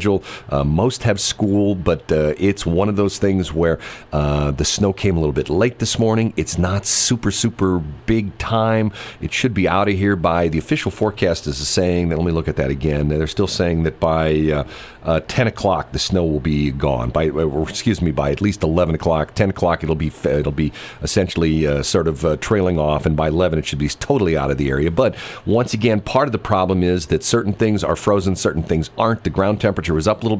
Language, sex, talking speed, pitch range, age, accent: English, male, 225 wpm, 80-100 Hz, 40-59, American